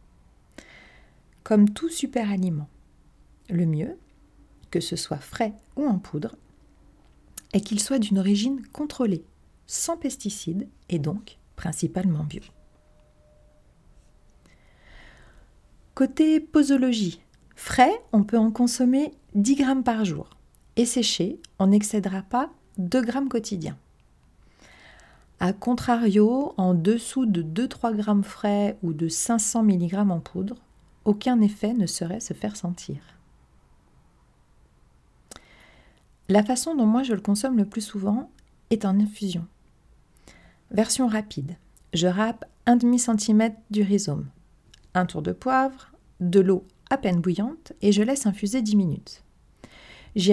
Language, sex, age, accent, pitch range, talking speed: French, female, 40-59, French, 180-240 Hz, 120 wpm